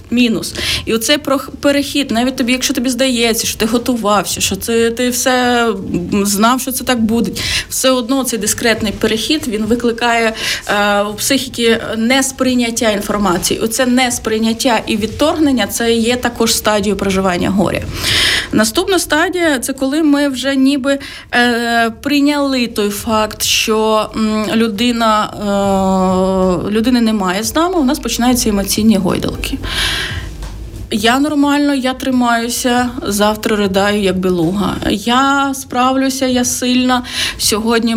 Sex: female